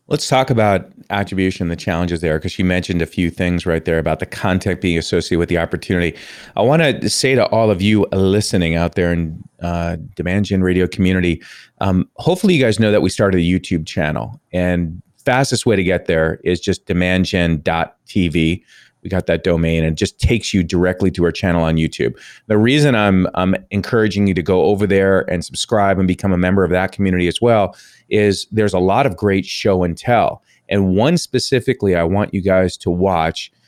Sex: male